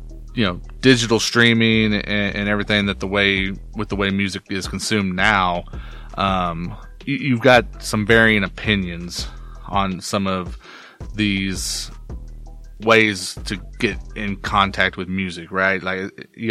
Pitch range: 95-115 Hz